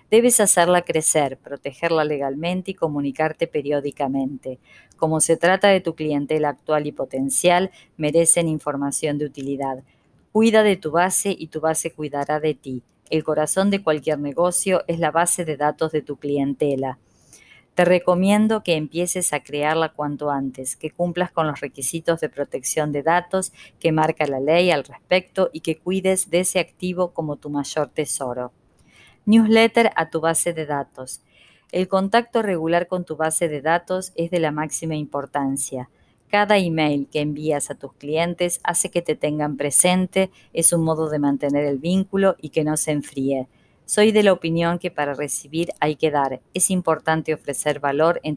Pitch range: 145-175 Hz